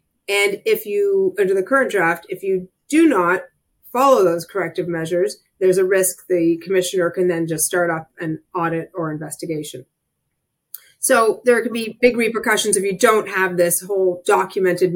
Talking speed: 170 wpm